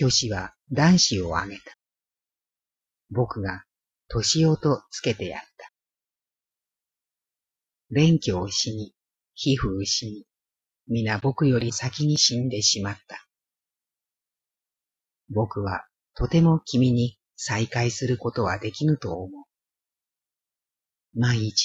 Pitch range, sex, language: 100-130 Hz, female, Japanese